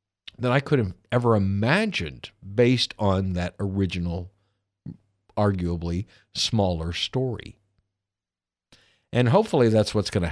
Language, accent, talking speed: English, American, 110 wpm